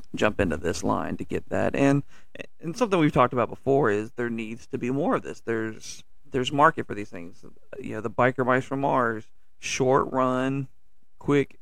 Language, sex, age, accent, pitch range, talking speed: English, male, 40-59, American, 110-135 Hz, 195 wpm